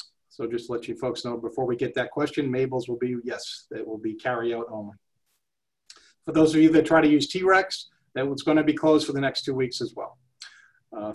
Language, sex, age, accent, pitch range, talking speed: English, male, 40-59, American, 135-165 Hz, 235 wpm